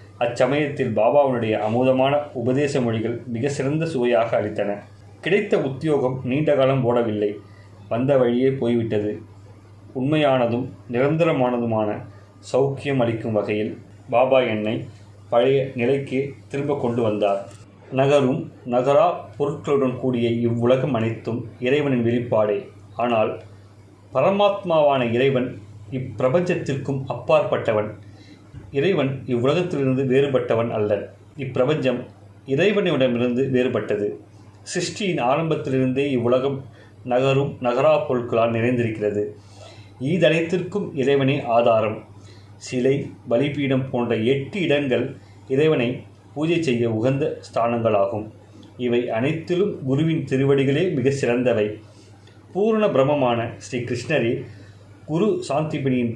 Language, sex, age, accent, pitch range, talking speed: Tamil, male, 30-49, native, 105-140 Hz, 85 wpm